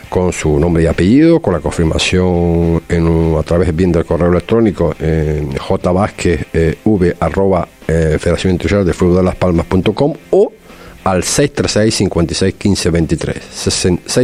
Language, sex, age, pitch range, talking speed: Spanish, male, 50-69, 80-100 Hz, 160 wpm